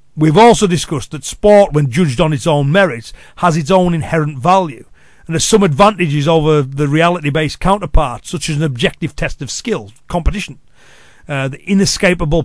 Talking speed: 170 wpm